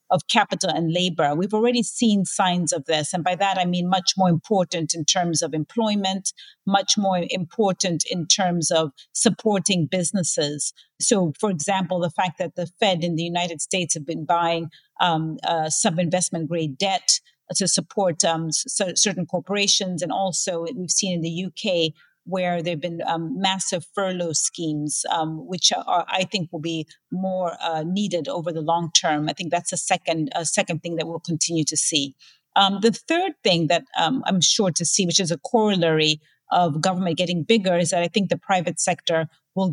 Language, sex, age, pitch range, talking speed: English, female, 40-59, 165-195 Hz, 185 wpm